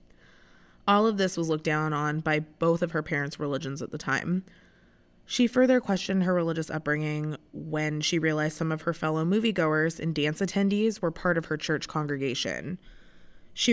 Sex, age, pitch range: female, 20-39, 155-195 Hz